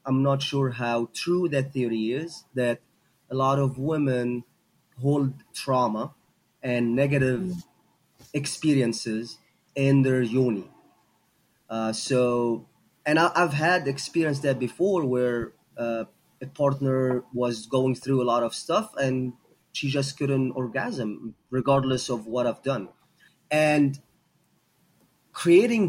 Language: Romanian